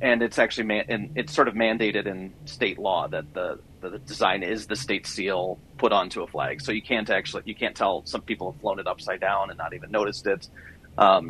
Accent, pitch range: American, 100-120 Hz